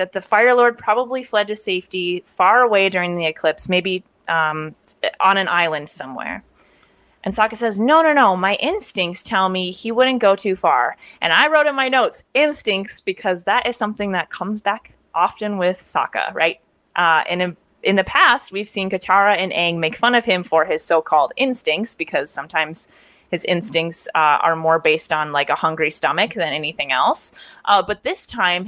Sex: female